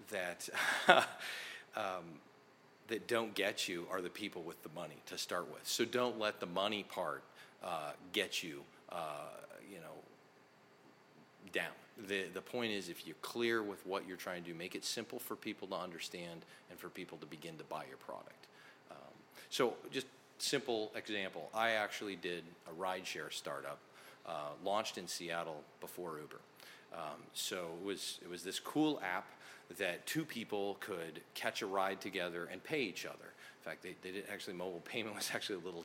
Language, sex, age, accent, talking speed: English, male, 40-59, American, 180 wpm